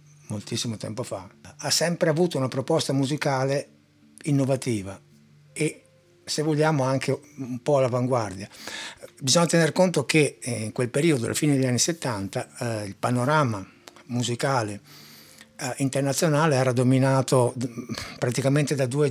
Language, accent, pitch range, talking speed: Italian, native, 115-140 Hz, 125 wpm